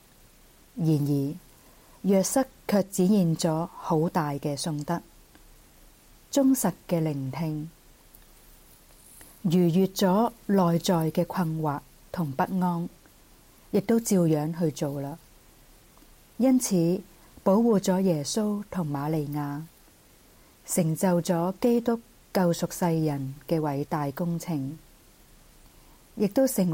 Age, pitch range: 40-59, 155-190 Hz